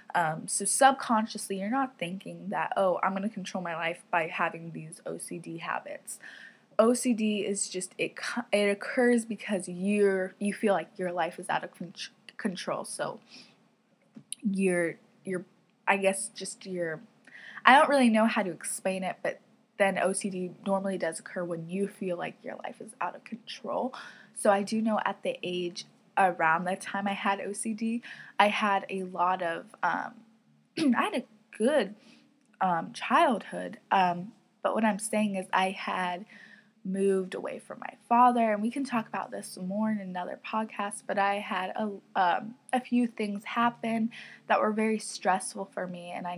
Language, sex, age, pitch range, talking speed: English, female, 20-39, 185-225 Hz, 170 wpm